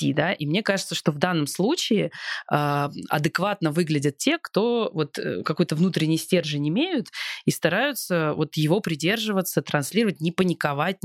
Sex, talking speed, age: female, 125 wpm, 20-39